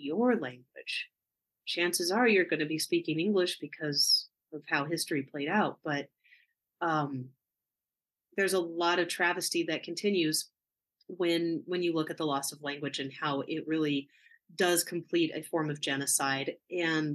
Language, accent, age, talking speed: English, American, 30-49, 160 wpm